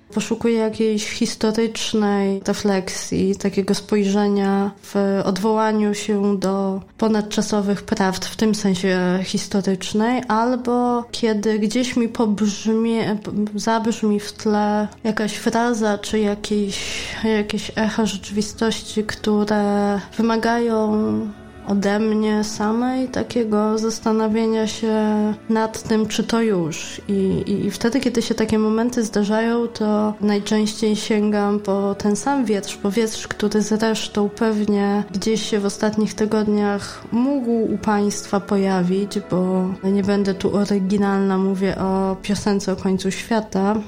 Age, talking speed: 20-39, 115 wpm